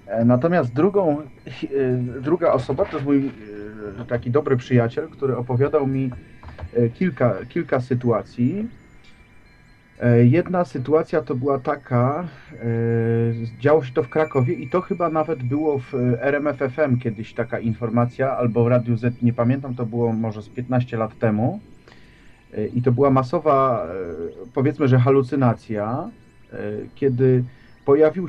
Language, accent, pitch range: Polish, native, 120-140 Hz